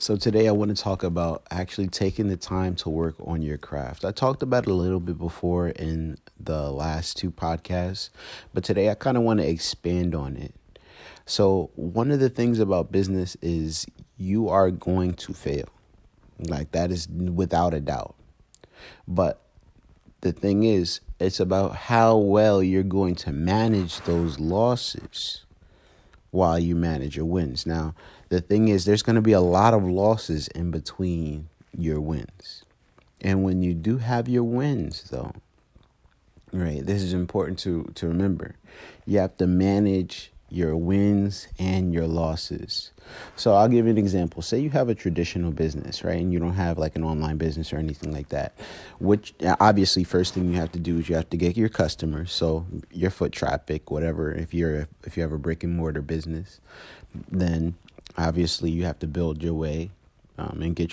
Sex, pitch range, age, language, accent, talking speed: male, 80-100 Hz, 30-49, English, American, 180 wpm